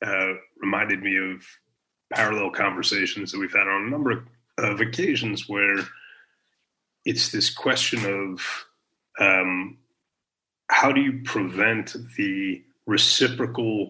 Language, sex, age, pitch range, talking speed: English, male, 30-49, 95-120 Hz, 110 wpm